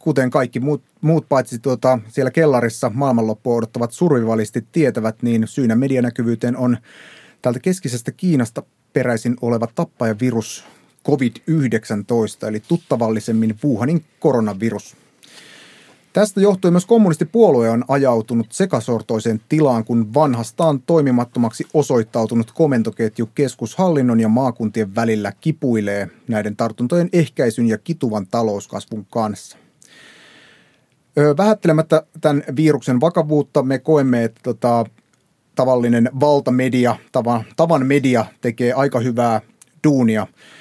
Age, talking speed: 30-49, 100 wpm